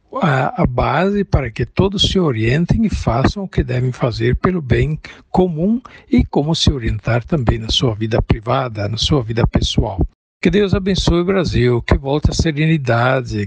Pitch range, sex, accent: 120-165 Hz, male, Brazilian